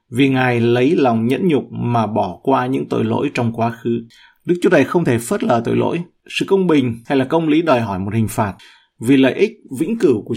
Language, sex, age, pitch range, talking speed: Vietnamese, male, 20-39, 115-145 Hz, 245 wpm